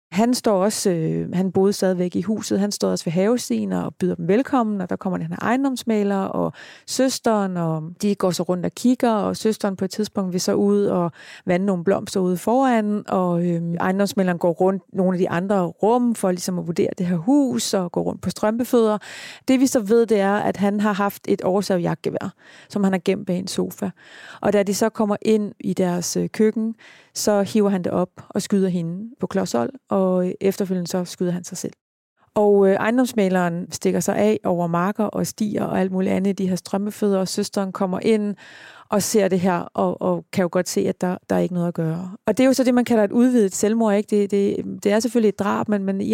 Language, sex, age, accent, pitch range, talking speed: Danish, female, 30-49, native, 180-210 Hz, 230 wpm